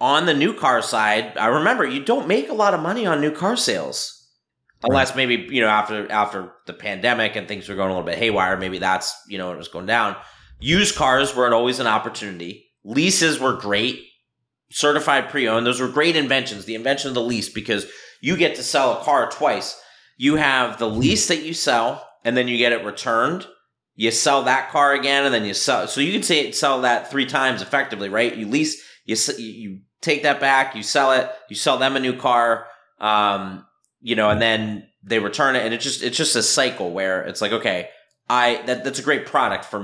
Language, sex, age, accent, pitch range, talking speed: English, male, 30-49, American, 110-145 Hz, 220 wpm